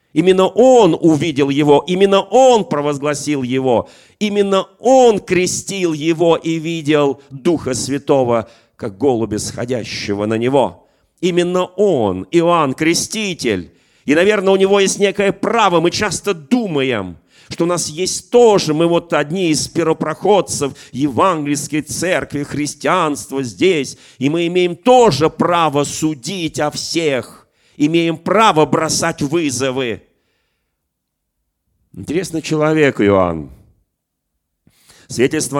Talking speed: 110 wpm